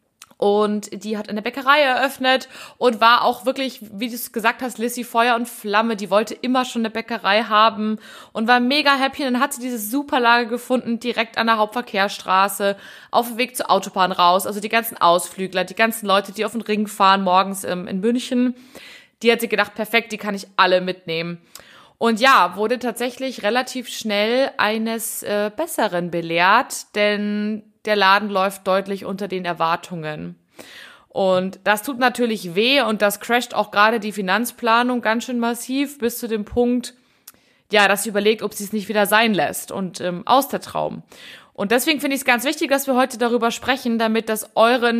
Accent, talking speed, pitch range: German, 185 wpm, 200-245 Hz